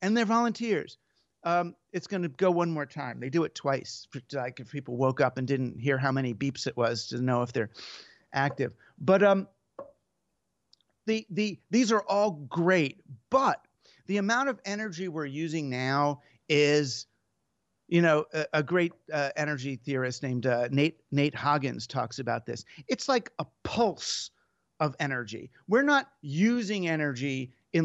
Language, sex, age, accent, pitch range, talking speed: English, male, 50-69, American, 135-190 Hz, 165 wpm